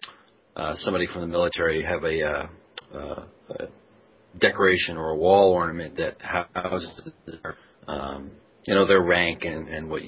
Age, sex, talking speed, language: 40-59, male, 150 wpm, English